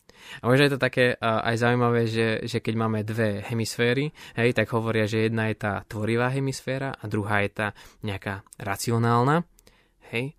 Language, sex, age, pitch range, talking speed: Slovak, male, 20-39, 105-120 Hz, 160 wpm